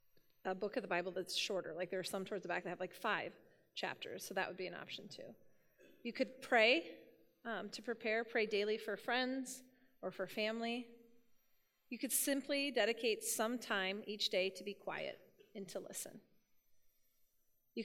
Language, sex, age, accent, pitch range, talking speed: English, female, 30-49, American, 190-235 Hz, 180 wpm